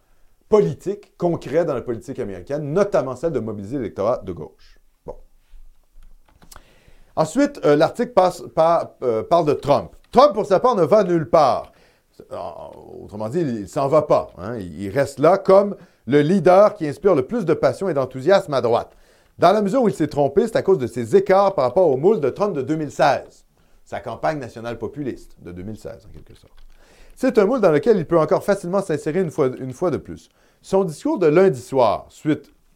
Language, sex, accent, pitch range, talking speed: French, male, French, 135-200 Hz, 200 wpm